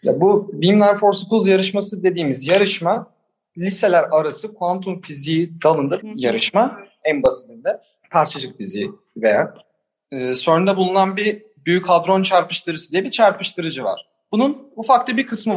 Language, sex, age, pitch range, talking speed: Turkish, male, 40-59, 145-210 Hz, 135 wpm